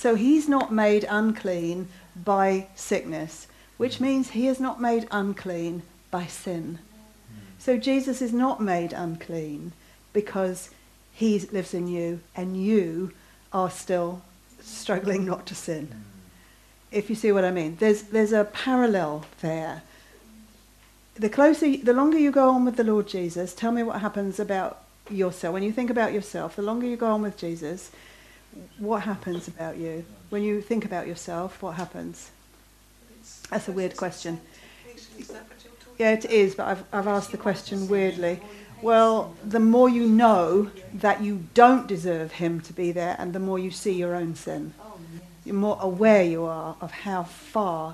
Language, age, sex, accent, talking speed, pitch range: English, 50-69, female, British, 165 wpm, 175-220 Hz